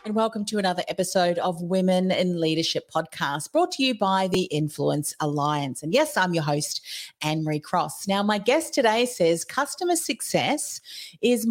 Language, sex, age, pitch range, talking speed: English, female, 40-59, 160-220 Hz, 165 wpm